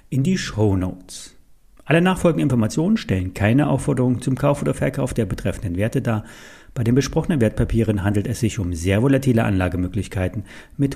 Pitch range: 110-170 Hz